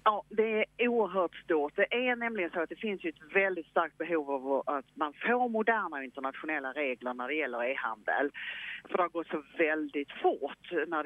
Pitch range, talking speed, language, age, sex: 150-230 Hz, 185 wpm, English, 40-59, female